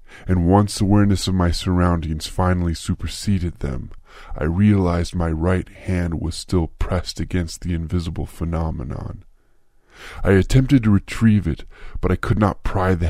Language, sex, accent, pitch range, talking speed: English, female, American, 85-100 Hz, 145 wpm